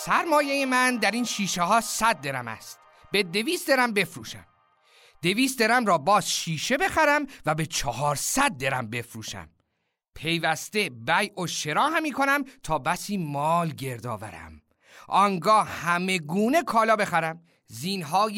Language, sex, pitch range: Persian, male, 155-250 Hz